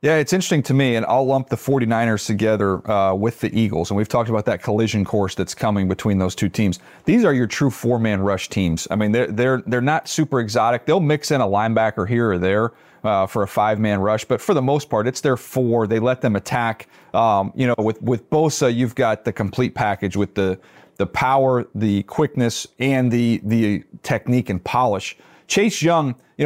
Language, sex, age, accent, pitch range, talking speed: English, male, 40-59, American, 110-145 Hz, 215 wpm